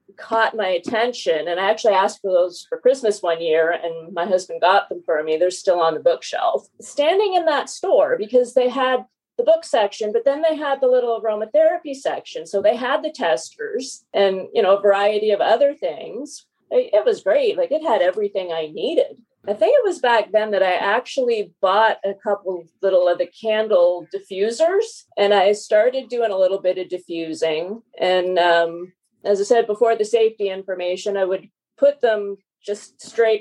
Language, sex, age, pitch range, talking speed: English, female, 40-59, 185-265 Hz, 190 wpm